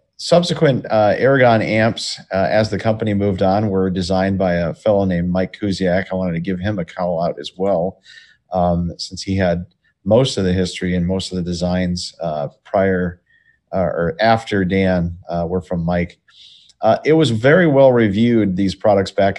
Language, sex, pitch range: English, male, 90-105 Hz